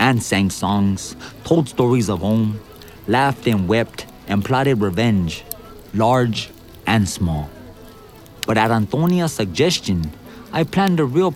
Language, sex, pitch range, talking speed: English, male, 95-145 Hz, 125 wpm